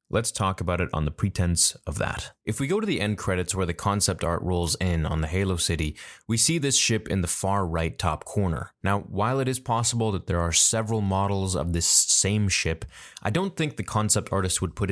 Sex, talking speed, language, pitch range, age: male, 235 wpm, English, 90-110 Hz, 20-39